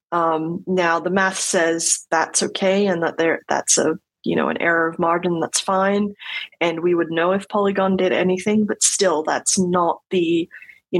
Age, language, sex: 20-39, English, female